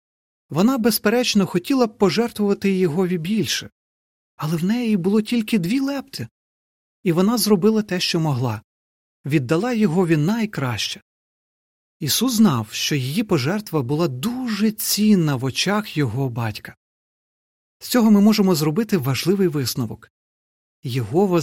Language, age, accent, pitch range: Ukrainian, 40-59, native, 145-225 Hz